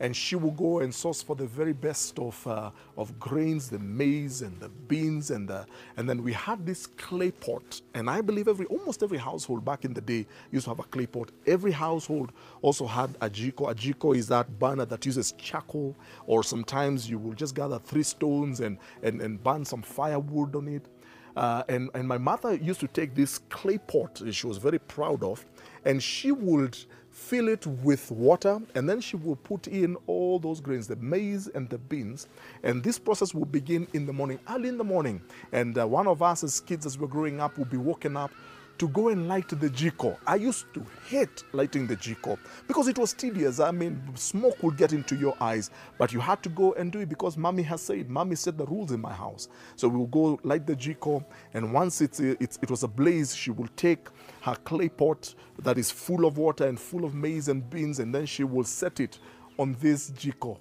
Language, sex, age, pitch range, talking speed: English, male, 40-59, 125-165 Hz, 220 wpm